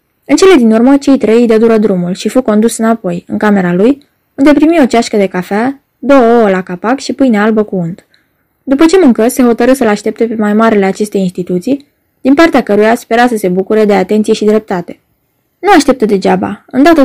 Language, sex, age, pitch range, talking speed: Romanian, female, 20-39, 200-260 Hz, 205 wpm